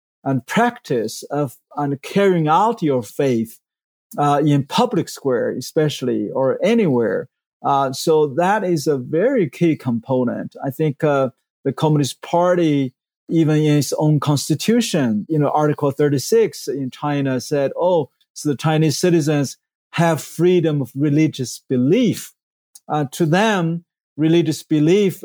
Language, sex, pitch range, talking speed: English, male, 135-160 Hz, 135 wpm